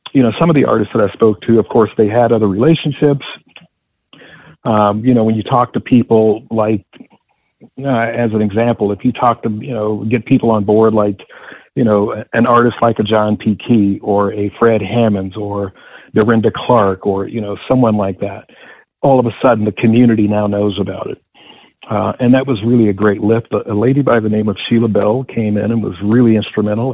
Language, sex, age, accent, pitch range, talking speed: English, male, 40-59, American, 105-115 Hz, 210 wpm